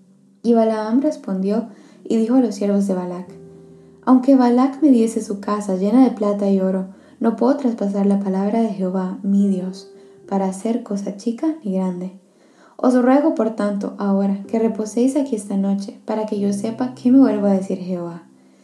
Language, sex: Spanish, female